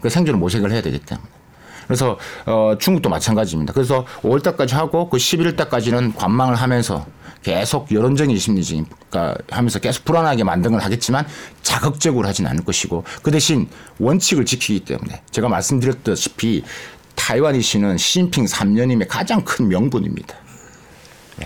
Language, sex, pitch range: Korean, male, 110-150 Hz